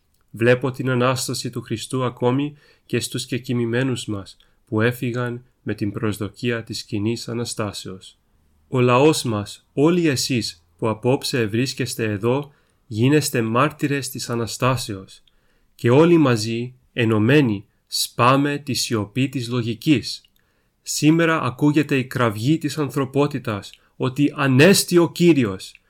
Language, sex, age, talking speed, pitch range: Greek, male, 30-49, 115 wpm, 110-135 Hz